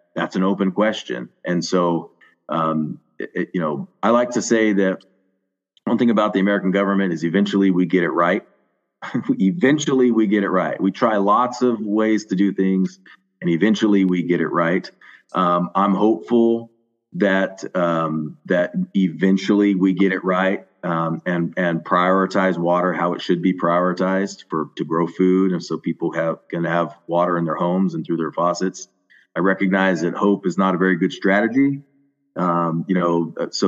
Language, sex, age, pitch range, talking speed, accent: English, male, 40-59, 85-100 Hz, 175 wpm, American